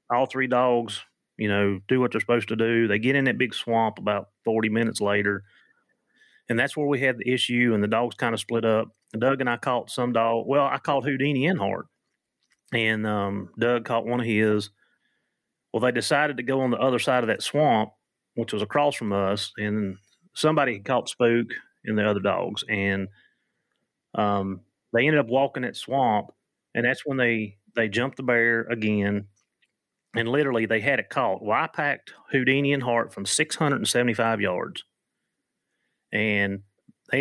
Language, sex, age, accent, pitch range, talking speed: English, male, 30-49, American, 105-125 Hz, 180 wpm